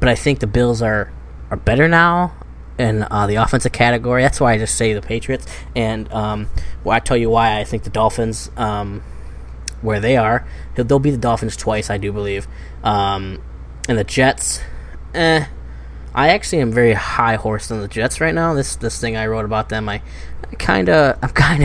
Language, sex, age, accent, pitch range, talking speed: English, male, 10-29, American, 95-120 Hz, 200 wpm